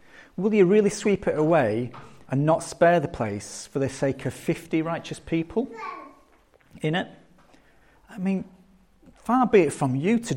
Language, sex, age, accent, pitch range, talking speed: English, male, 40-59, British, 130-195 Hz, 160 wpm